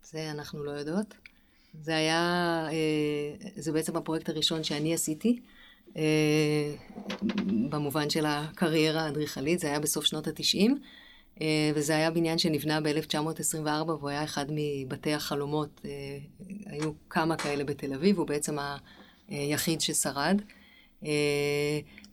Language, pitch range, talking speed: Hebrew, 150-175 Hz, 110 wpm